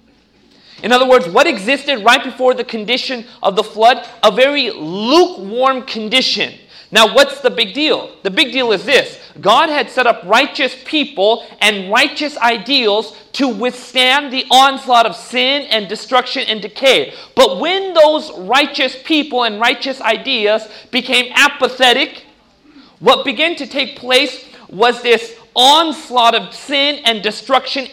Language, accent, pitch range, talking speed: English, American, 230-275 Hz, 145 wpm